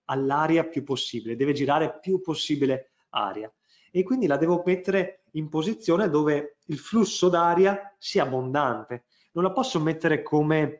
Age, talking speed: 30-49, 145 wpm